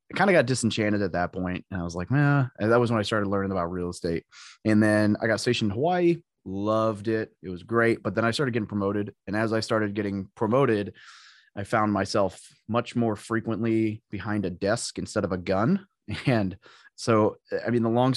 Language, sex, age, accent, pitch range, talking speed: English, male, 30-49, American, 95-115 Hz, 215 wpm